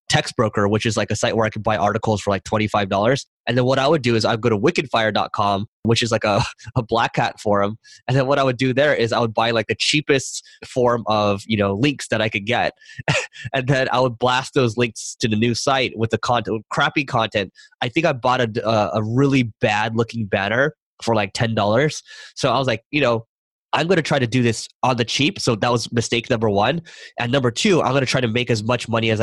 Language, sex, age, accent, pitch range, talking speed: English, male, 20-39, American, 110-130 Hz, 250 wpm